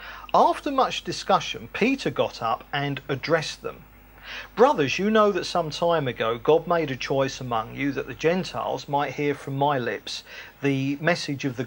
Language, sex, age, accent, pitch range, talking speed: English, male, 40-59, British, 145-225 Hz, 175 wpm